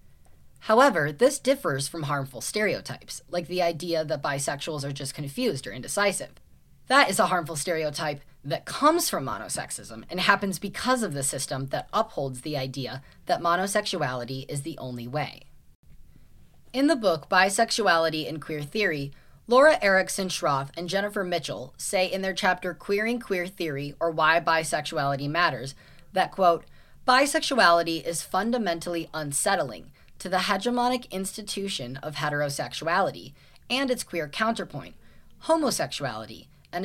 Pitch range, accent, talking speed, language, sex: 145-200 Hz, American, 135 wpm, English, female